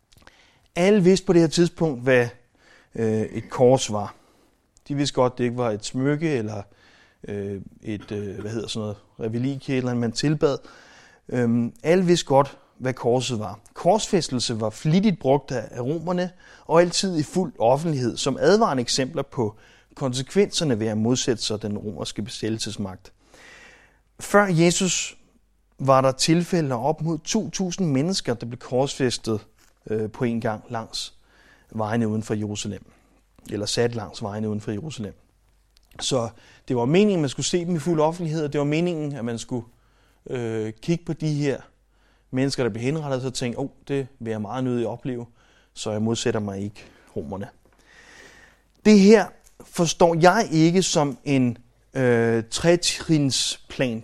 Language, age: Danish, 30-49